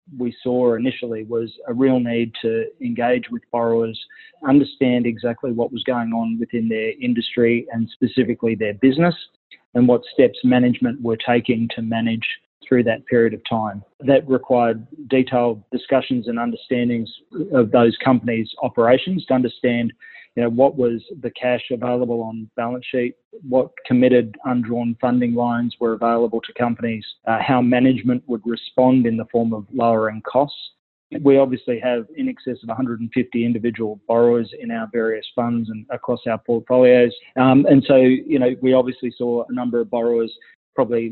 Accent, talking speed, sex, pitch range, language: Australian, 160 wpm, male, 115-130 Hz, English